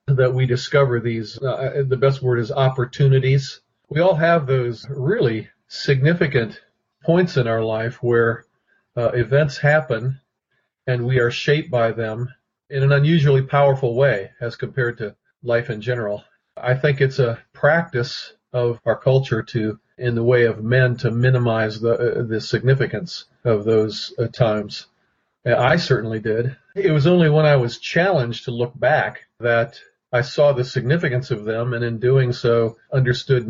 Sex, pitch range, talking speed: male, 115-135 Hz, 160 wpm